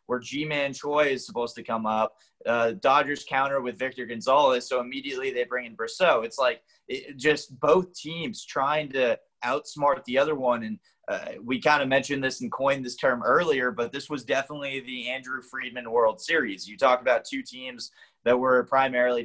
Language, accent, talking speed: English, American, 185 wpm